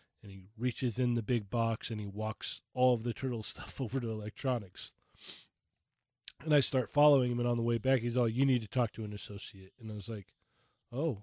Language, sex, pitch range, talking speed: English, male, 105-130 Hz, 225 wpm